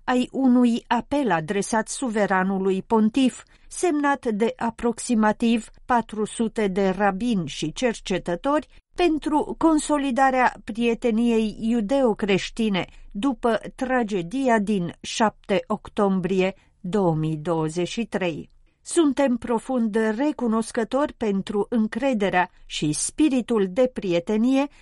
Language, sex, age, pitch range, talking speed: Romanian, female, 40-59, 195-255 Hz, 80 wpm